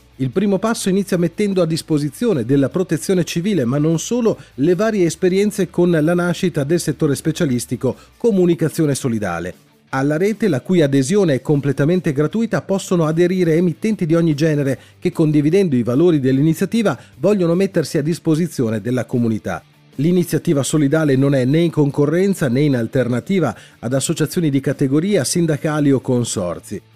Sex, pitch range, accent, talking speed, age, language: male, 125-180 Hz, native, 145 wpm, 40-59, Italian